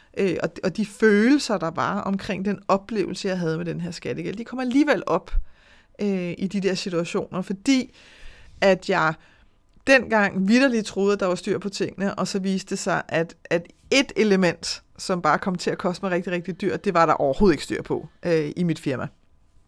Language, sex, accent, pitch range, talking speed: Danish, female, native, 180-225 Hz, 190 wpm